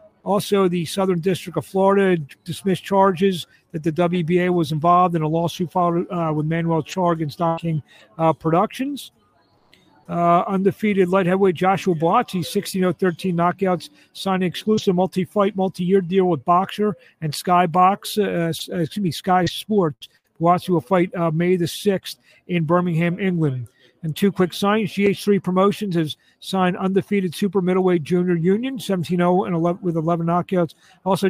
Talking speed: 155 wpm